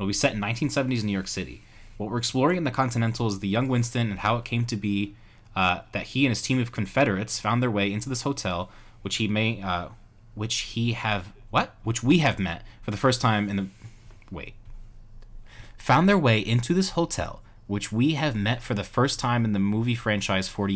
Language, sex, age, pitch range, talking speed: English, male, 20-39, 100-115 Hz, 225 wpm